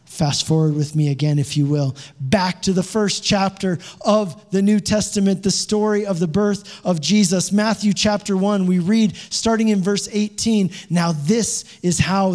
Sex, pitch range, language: male, 160-200 Hz, English